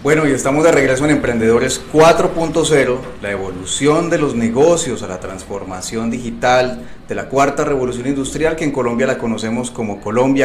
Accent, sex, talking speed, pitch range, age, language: Colombian, male, 165 wpm, 115-140 Hz, 30-49, Spanish